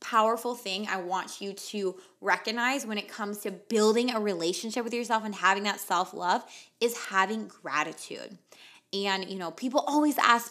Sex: female